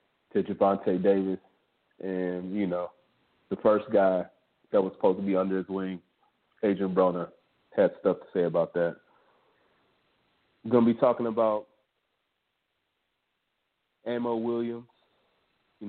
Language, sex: English, male